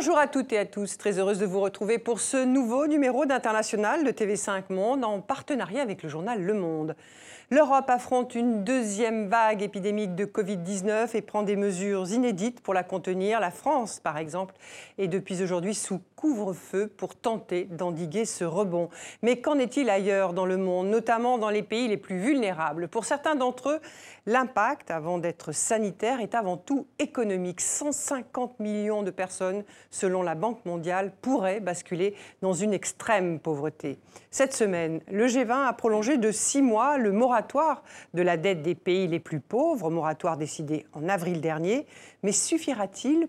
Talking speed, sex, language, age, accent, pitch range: 170 wpm, female, French, 50-69, French, 180-245 Hz